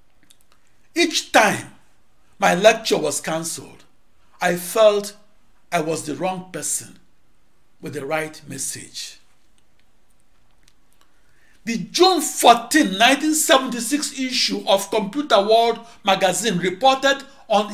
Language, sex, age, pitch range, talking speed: English, male, 60-79, 195-265 Hz, 95 wpm